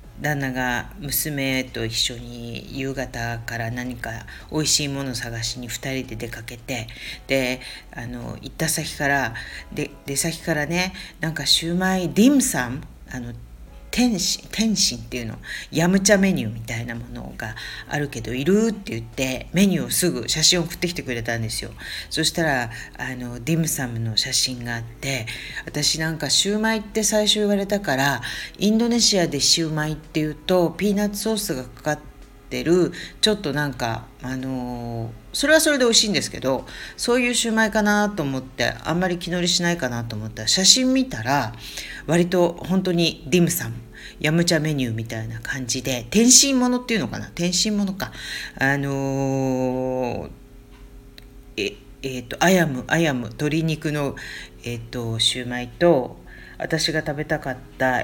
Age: 40-59